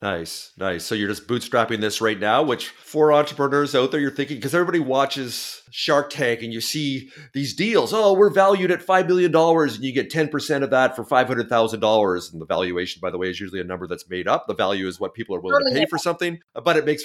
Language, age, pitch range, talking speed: English, 40-59, 110-150 Hz, 240 wpm